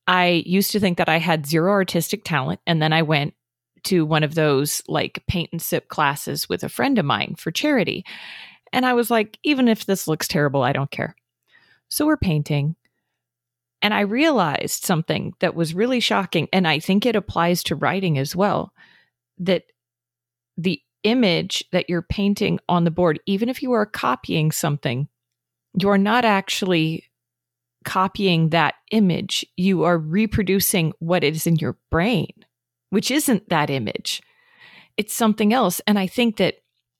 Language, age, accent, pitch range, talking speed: English, 30-49, American, 155-205 Hz, 160 wpm